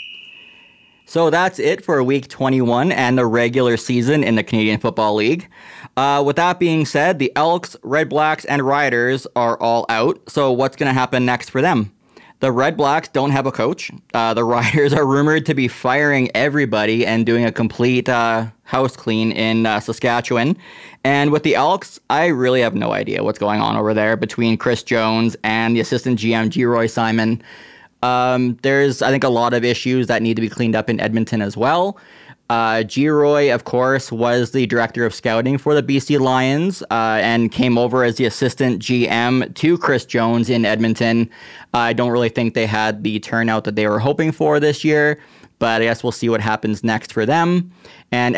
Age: 20-39